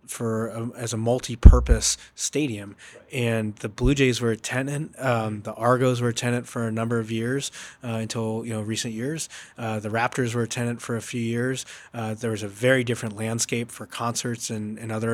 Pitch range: 110-125 Hz